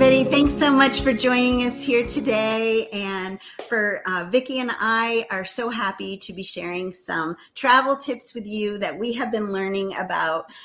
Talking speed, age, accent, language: 180 wpm, 40-59, American, English